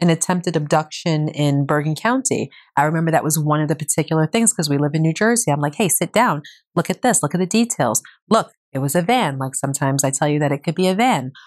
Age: 30-49